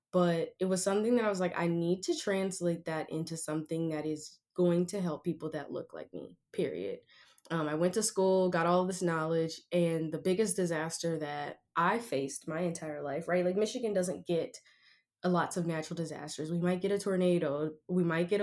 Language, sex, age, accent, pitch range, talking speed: English, female, 10-29, American, 160-190 Hz, 205 wpm